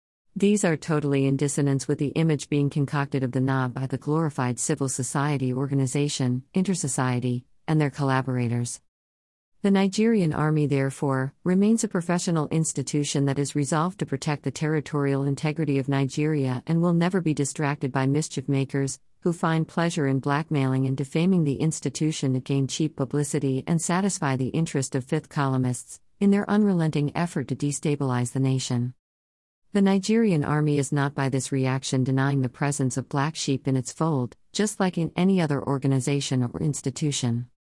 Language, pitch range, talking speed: English, 130-155 Hz, 160 wpm